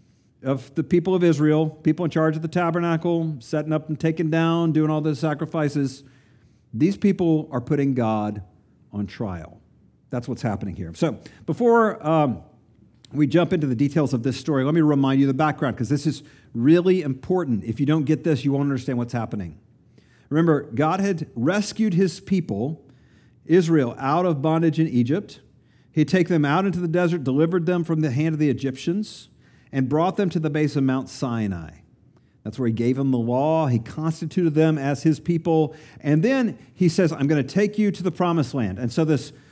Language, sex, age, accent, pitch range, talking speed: English, male, 50-69, American, 135-175 Hz, 195 wpm